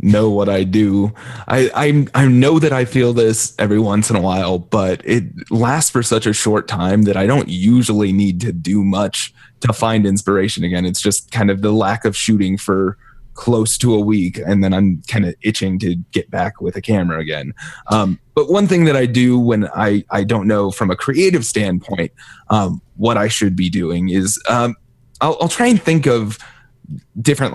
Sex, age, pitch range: male, 20-39, 100-120 Hz